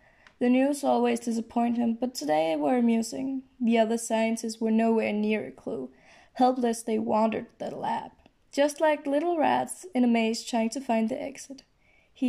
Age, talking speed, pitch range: 20-39, 170 wpm, 230-265 Hz